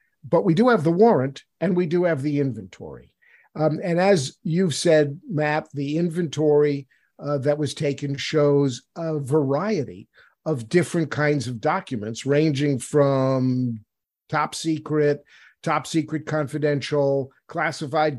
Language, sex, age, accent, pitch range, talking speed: English, male, 50-69, American, 135-160 Hz, 130 wpm